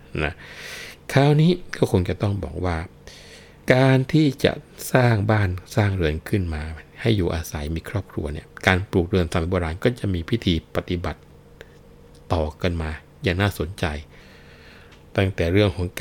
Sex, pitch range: male, 80-95 Hz